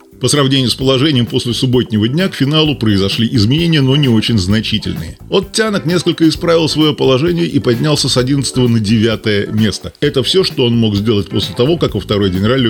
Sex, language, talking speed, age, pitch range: male, Russian, 190 wpm, 20-39, 110-140 Hz